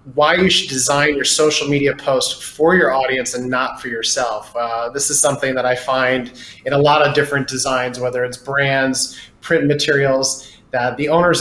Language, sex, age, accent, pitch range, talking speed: English, male, 30-49, American, 125-150 Hz, 190 wpm